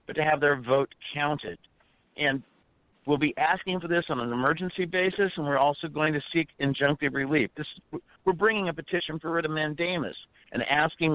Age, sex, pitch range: 60-79, male, 140-175 Hz